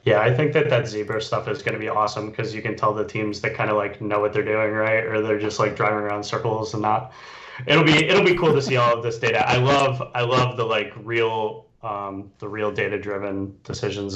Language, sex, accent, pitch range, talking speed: English, male, American, 115-135 Hz, 255 wpm